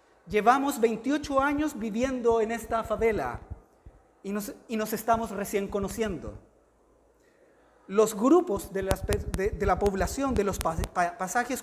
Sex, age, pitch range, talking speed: male, 30-49, 205-265 Hz, 120 wpm